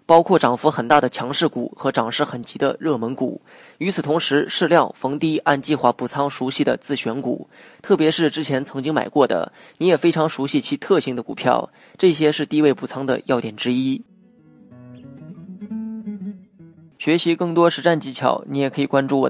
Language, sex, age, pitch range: Chinese, male, 20-39, 130-160 Hz